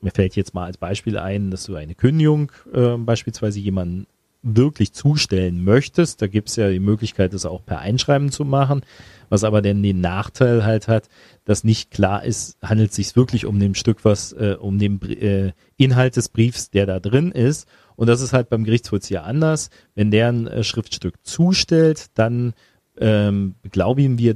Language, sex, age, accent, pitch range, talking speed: German, male, 40-59, German, 100-120 Hz, 190 wpm